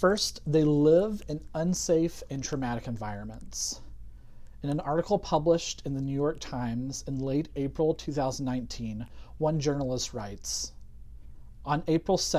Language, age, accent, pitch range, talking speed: English, 40-59, American, 120-160 Hz, 125 wpm